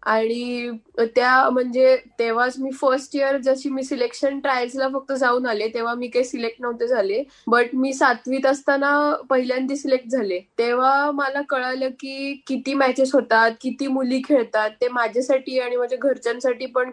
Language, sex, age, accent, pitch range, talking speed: Marathi, female, 10-29, native, 240-275 Hz, 155 wpm